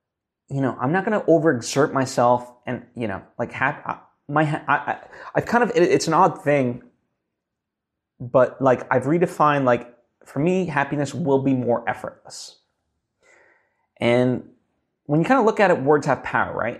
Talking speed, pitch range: 170 wpm, 120-165 Hz